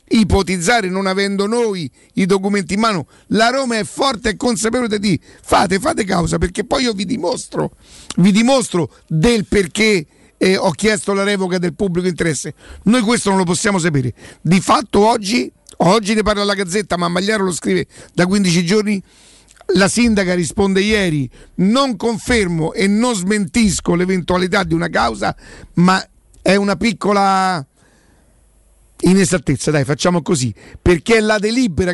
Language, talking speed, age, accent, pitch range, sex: Italian, 155 wpm, 50-69, native, 175-215 Hz, male